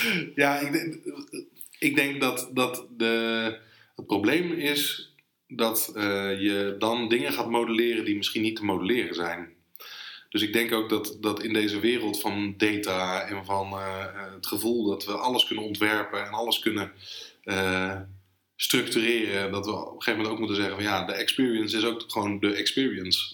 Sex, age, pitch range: male, 20-39, 100-115 Hz